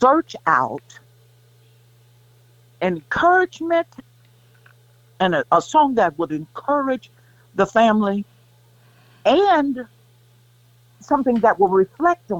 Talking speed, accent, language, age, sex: 80 wpm, American, English, 60-79, female